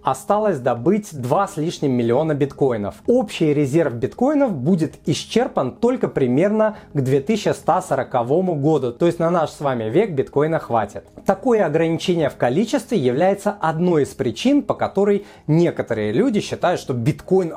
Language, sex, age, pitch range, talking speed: Russian, male, 30-49, 135-195 Hz, 140 wpm